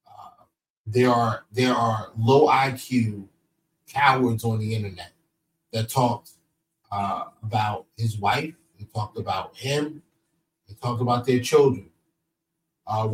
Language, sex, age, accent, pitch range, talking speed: English, male, 30-49, American, 120-165 Hz, 120 wpm